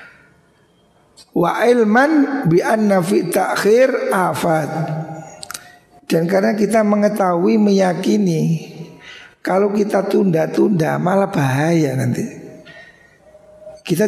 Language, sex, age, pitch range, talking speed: Indonesian, male, 60-79, 160-210 Hz, 70 wpm